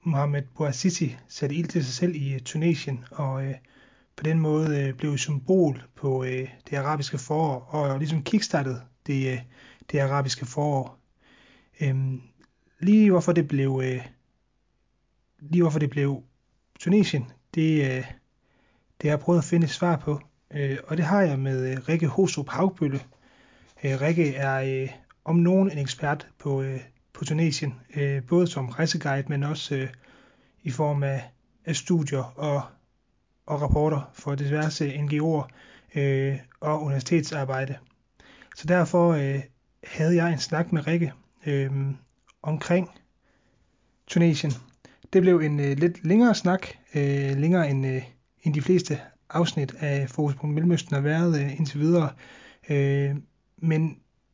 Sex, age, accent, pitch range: male, 30-49, native, 135-160 Hz